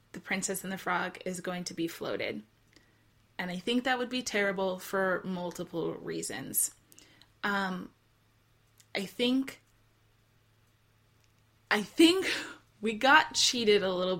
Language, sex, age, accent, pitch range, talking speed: English, female, 20-39, American, 175-230 Hz, 125 wpm